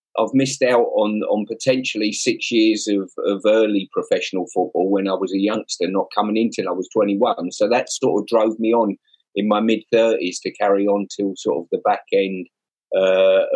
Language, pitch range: English, 95-120 Hz